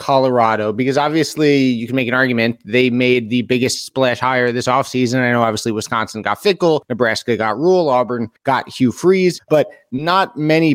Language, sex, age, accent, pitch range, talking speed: English, male, 20-39, American, 125-150 Hz, 185 wpm